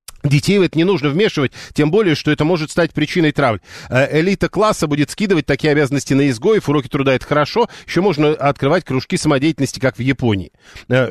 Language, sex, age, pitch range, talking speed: Russian, male, 50-69, 130-195 Hz, 190 wpm